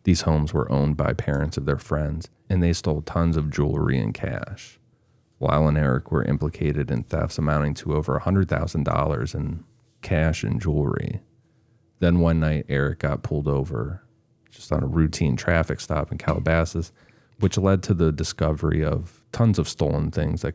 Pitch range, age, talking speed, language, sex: 75-95 Hz, 30-49, 170 wpm, English, male